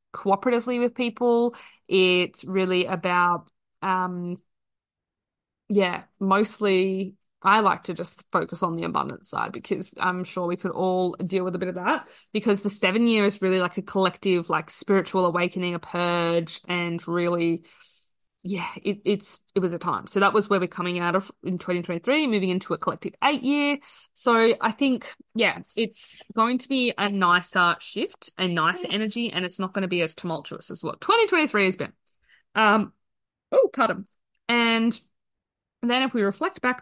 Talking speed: 170 wpm